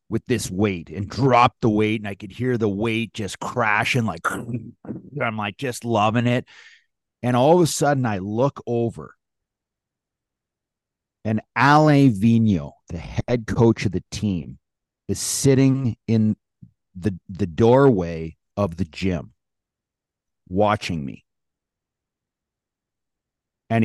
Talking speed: 125 wpm